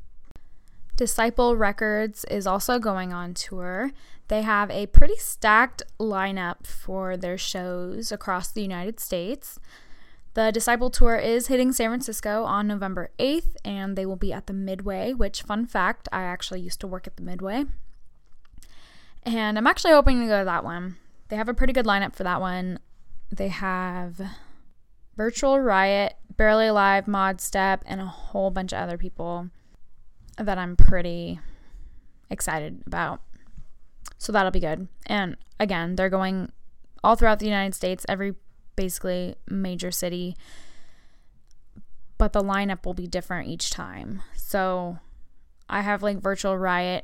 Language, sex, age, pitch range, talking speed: English, female, 10-29, 180-220 Hz, 150 wpm